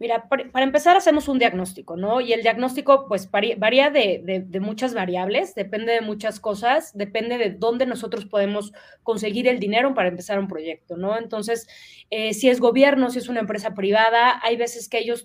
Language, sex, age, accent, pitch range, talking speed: Spanish, female, 20-39, Mexican, 210-275 Hz, 190 wpm